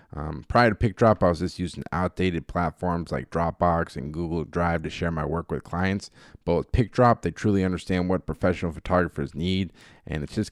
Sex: male